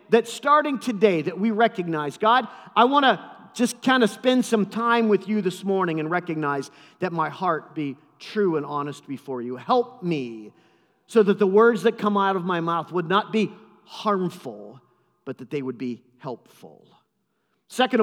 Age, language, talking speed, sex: 40-59, English, 180 wpm, male